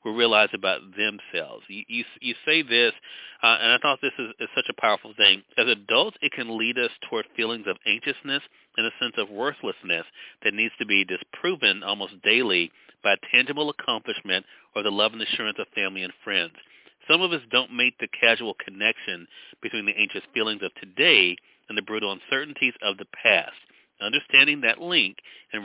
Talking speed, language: 185 wpm, English